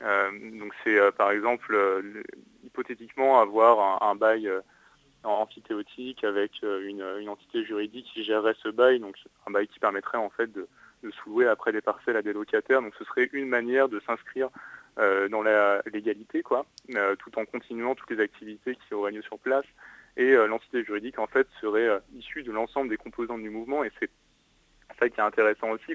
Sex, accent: male, French